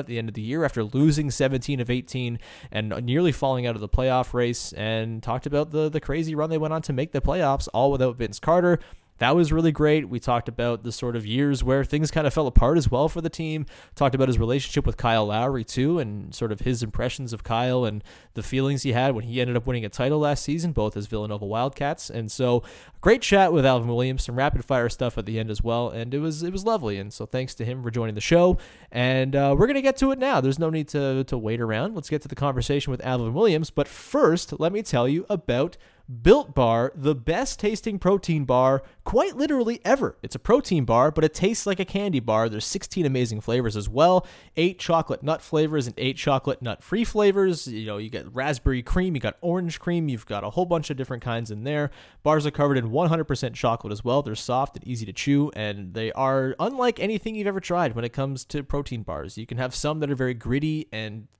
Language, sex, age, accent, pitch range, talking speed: English, male, 20-39, American, 120-155 Hz, 240 wpm